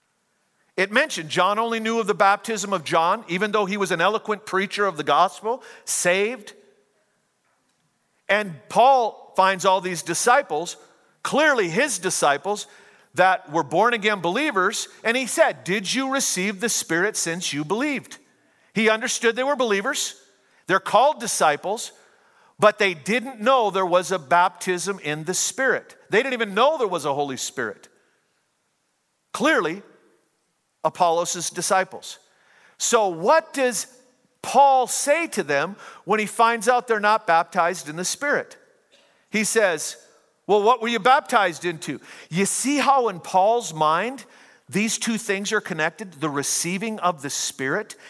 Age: 50-69